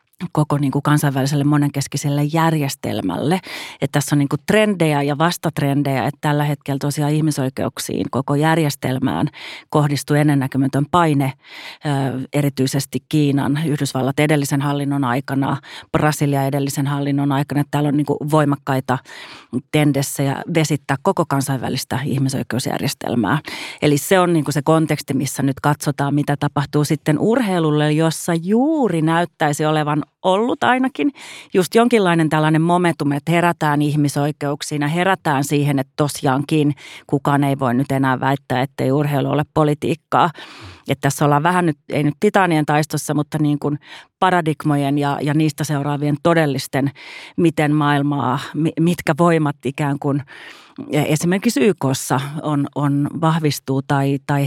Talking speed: 130 wpm